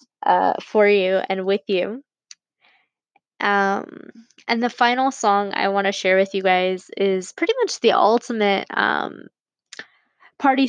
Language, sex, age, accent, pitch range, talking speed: English, female, 10-29, American, 195-225 Hz, 140 wpm